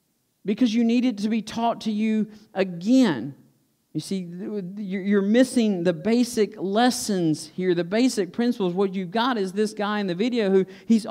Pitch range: 200-245 Hz